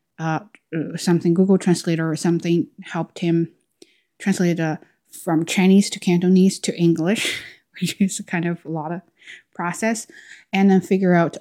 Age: 20-39